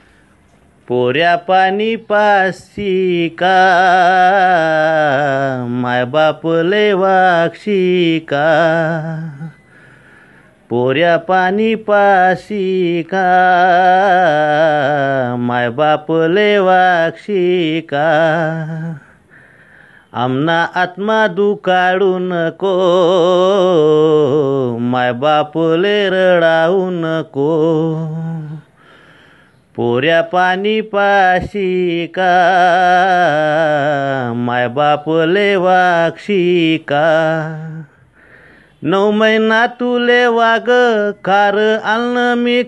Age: 30-49